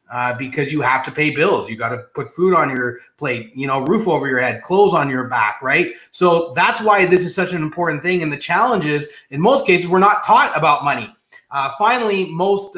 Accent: American